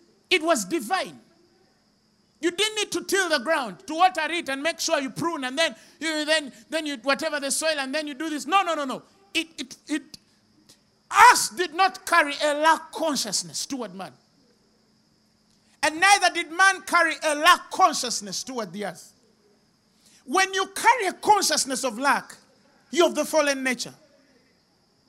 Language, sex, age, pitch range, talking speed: English, male, 50-69, 255-345 Hz, 170 wpm